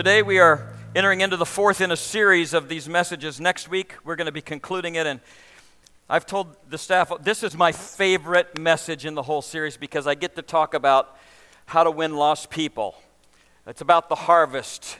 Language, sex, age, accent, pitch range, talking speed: English, male, 50-69, American, 160-190 Hz, 200 wpm